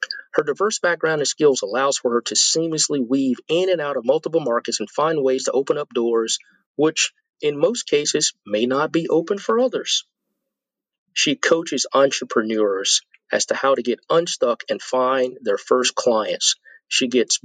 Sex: male